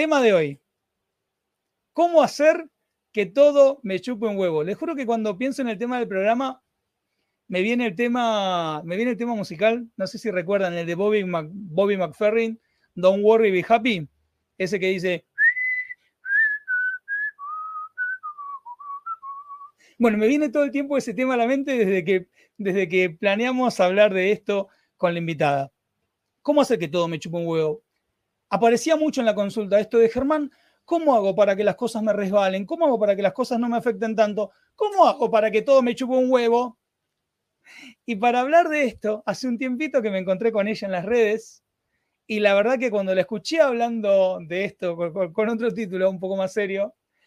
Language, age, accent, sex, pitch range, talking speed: Spanish, 40-59, Argentinian, male, 185-255 Hz, 180 wpm